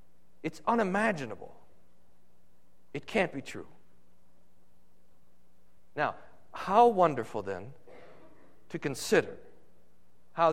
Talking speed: 75 wpm